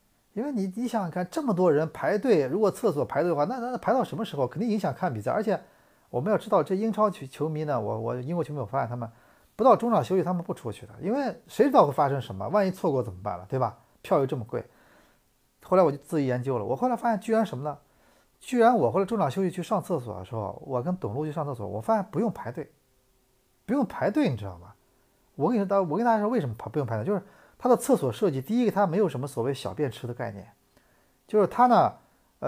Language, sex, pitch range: Chinese, male, 125-200 Hz